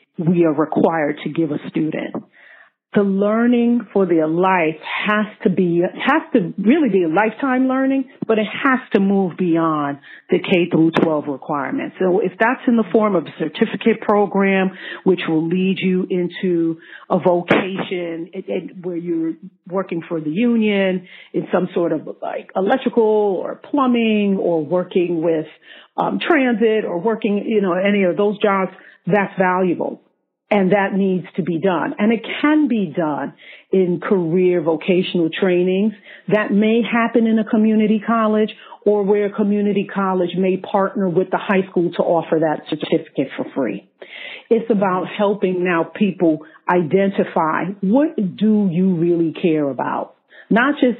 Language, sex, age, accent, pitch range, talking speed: English, female, 40-59, American, 175-215 Hz, 155 wpm